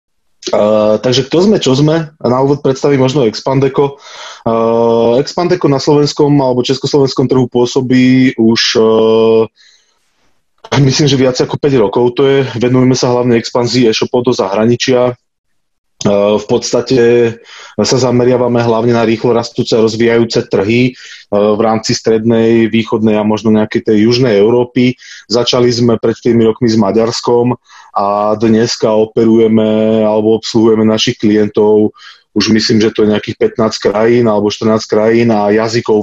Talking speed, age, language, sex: 140 wpm, 20-39, Slovak, male